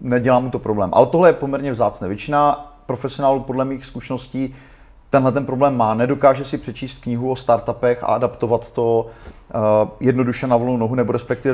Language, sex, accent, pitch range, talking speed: Czech, male, native, 115-145 Hz, 175 wpm